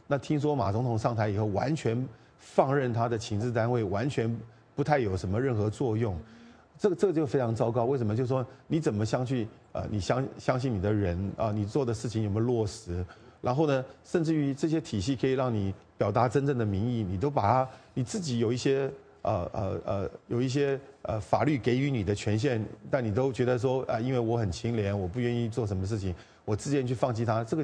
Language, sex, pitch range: English, male, 110-135 Hz